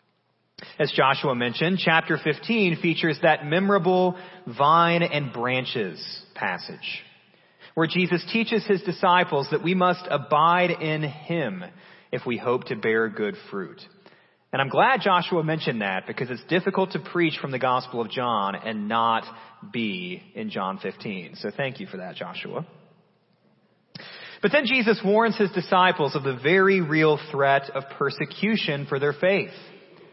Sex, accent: male, American